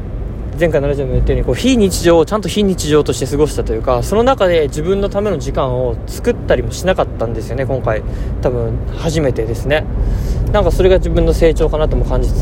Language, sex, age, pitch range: Japanese, male, 20-39, 115-195 Hz